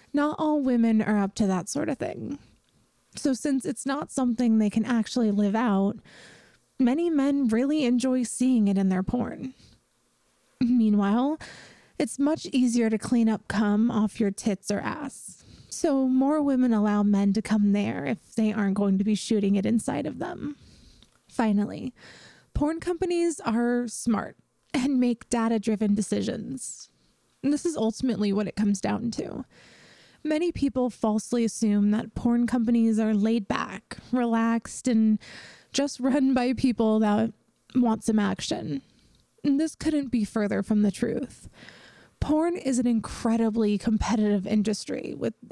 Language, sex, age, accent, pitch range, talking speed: English, female, 20-39, American, 215-270 Hz, 150 wpm